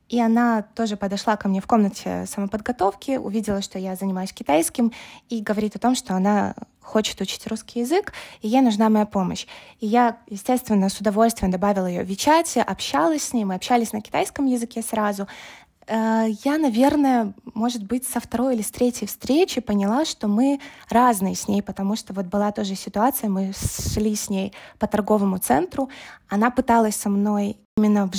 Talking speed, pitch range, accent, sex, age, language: 175 wpm, 210-255 Hz, native, female, 20-39, Russian